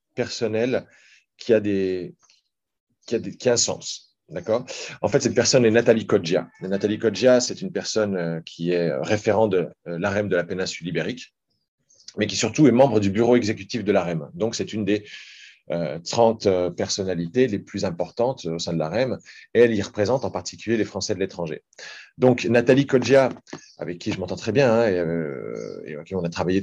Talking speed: 175 wpm